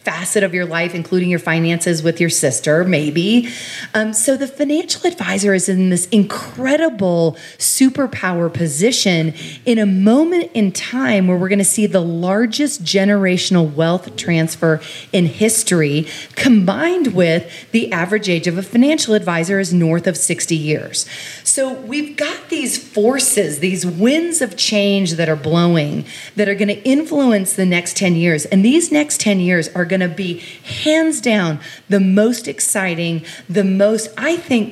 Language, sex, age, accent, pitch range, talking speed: English, female, 40-59, American, 170-235 Hz, 160 wpm